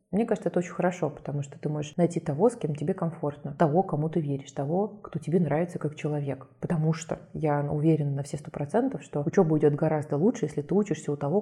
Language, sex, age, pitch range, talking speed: Russian, female, 20-39, 145-170 Hz, 225 wpm